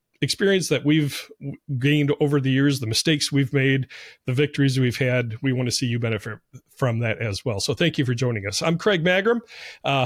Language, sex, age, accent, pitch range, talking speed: English, male, 40-59, American, 125-150 Hz, 210 wpm